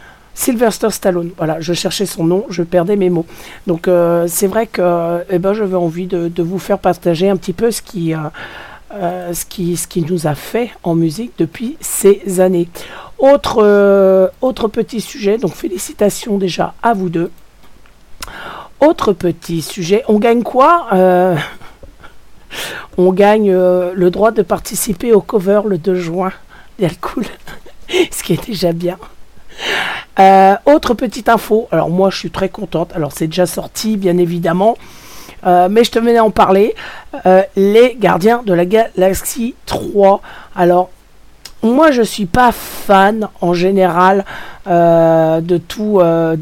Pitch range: 175-215 Hz